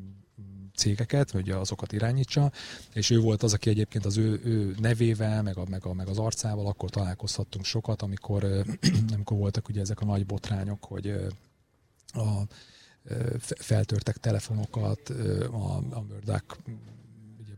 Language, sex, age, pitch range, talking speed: Hungarian, male, 30-49, 105-125 Hz, 135 wpm